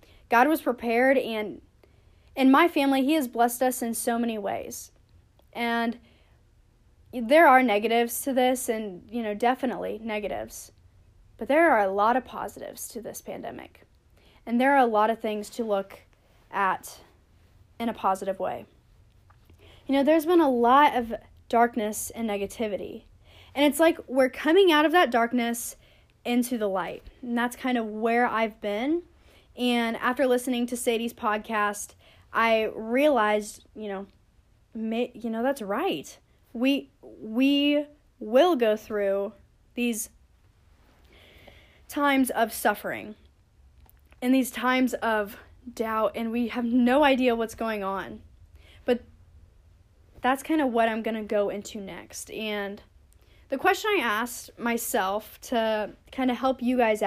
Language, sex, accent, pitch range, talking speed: English, female, American, 210-255 Hz, 145 wpm